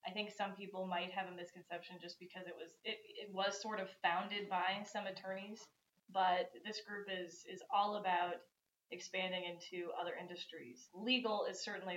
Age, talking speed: 20-39, 175 wpm